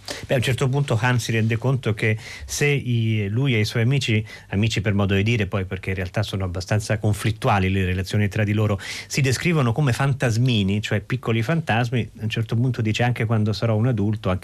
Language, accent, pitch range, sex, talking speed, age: Italian, native, 105-135 Hz, male, 210 wpm, 40-59